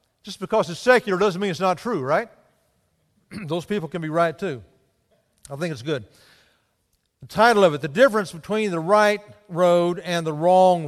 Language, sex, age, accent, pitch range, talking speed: English, male, 50-69, American, 155-215 Hz, 180 wpm